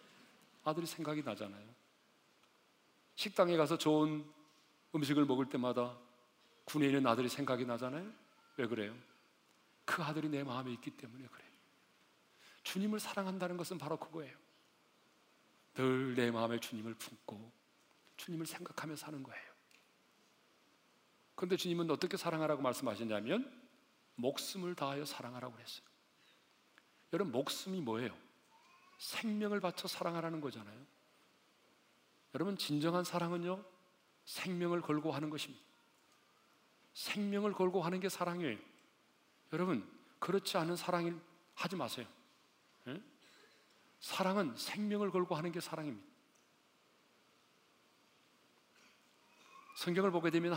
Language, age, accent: Korean, 40-59, native